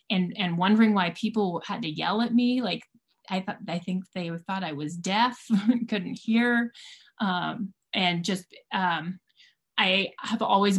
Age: 20-39